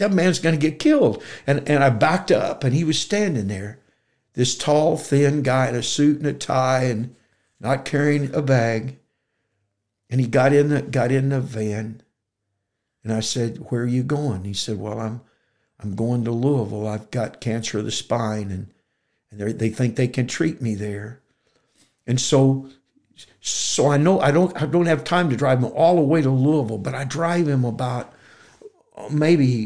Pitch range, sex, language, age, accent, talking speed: 115-150 Hz, male, English, 60-79, American, 195 wpm